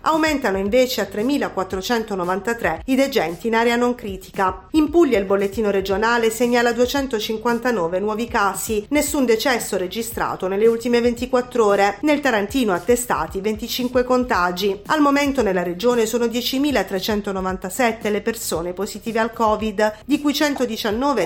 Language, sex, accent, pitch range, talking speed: Italian, female, native, 190-245 Hz, 125 wpm